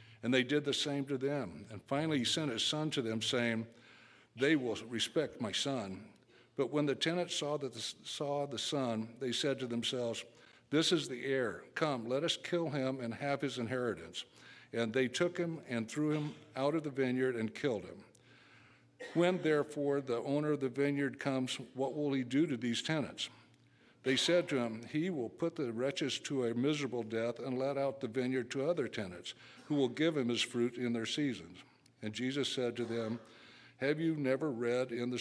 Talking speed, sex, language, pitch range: 200 wpm, male, English, 120-145 Hz